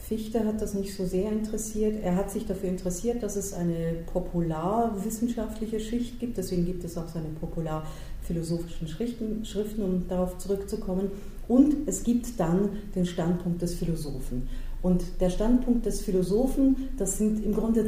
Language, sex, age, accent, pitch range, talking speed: German, female, 40-59, German, 170-215 Hz, 150 wpm